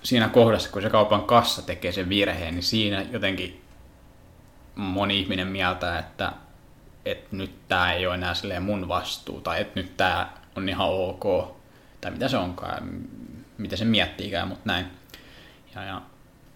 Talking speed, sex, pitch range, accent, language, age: 160 wpm, male, 95-120 Hz, native, Finnish, 20-39